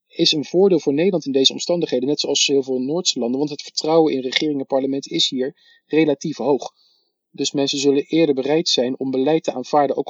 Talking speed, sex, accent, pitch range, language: 215 wpm, male, Dutch, 130-160 Hz, Dutch